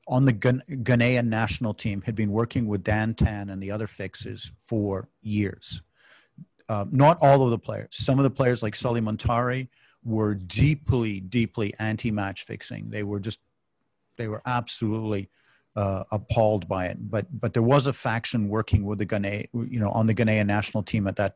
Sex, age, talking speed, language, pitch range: male, 50-69, 180 wpm, English, 110-130 Hz